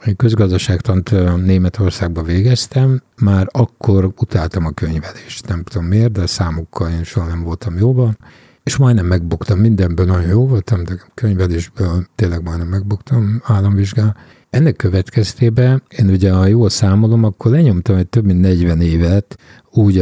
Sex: male